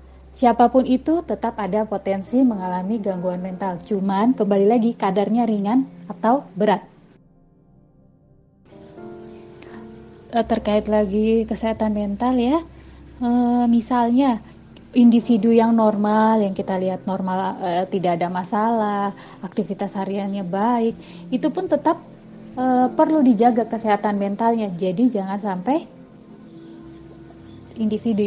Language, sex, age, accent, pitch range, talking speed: Indonesian, female, 30-49, native, 195-235 Hz, 95 wpm